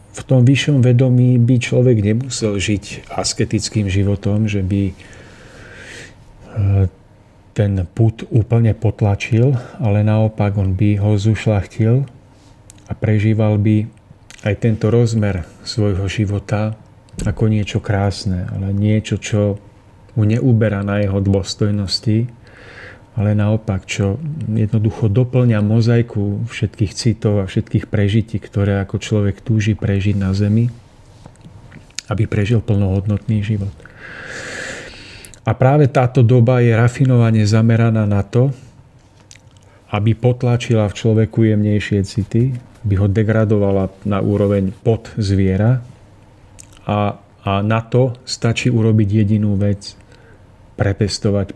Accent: native